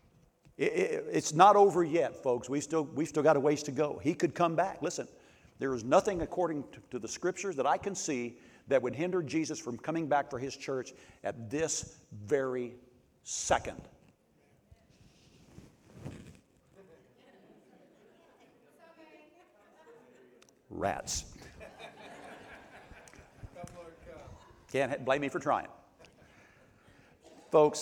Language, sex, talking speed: English, male, 120 wpm